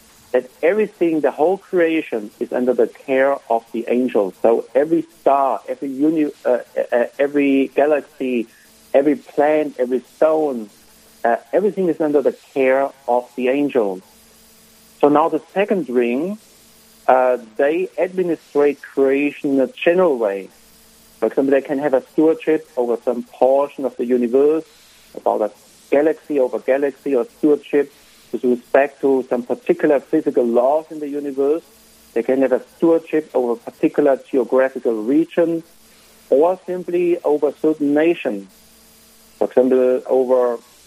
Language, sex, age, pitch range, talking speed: English, male, 50-69, 130-165 Hz, 140 wpm